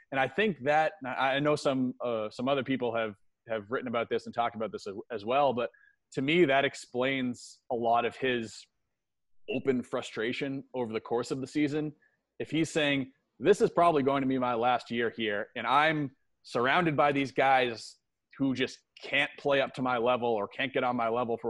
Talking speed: 205 wpm